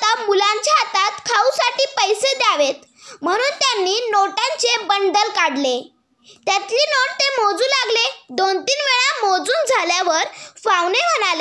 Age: 20-39